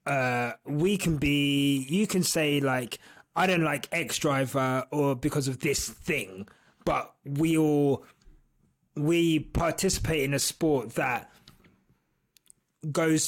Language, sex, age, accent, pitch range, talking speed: English, male, 20-39, British, 145-185 Hz, 125 wpm